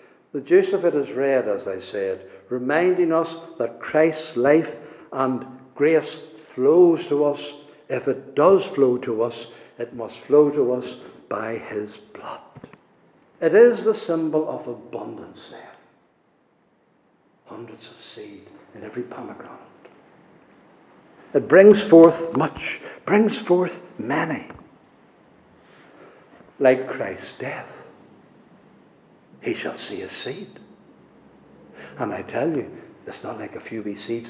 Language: English